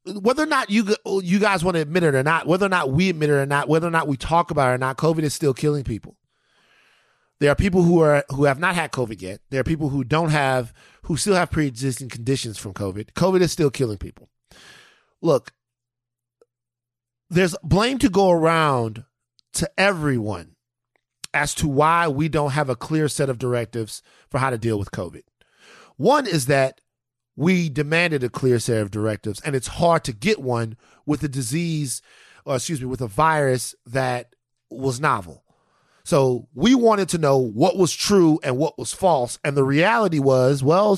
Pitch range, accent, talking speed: 125-170 Hz, American, 195 wpm